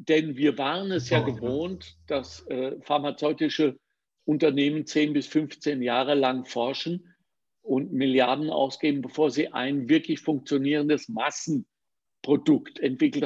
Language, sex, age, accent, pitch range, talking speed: German, male, 50-69, German, 135-180 Hz, 120 wpm